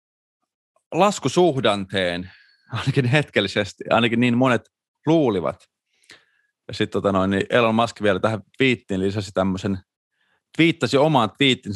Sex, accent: male, native